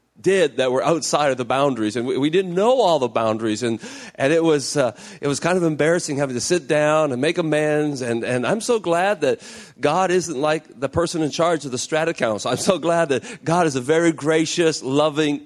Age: 40-59